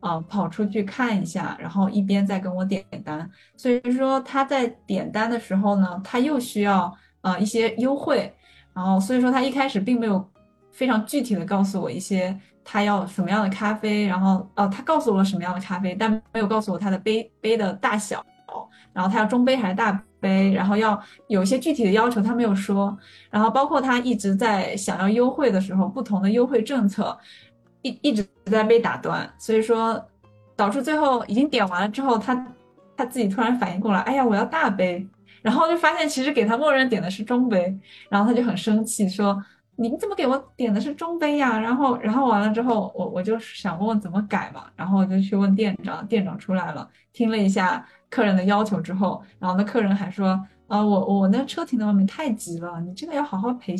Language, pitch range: Chinese, 195-245 Hz